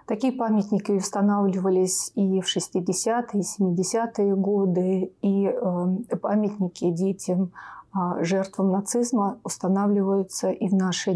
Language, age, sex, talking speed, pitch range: Russian, 30-49, female, 100 wpm, 195-220 Hz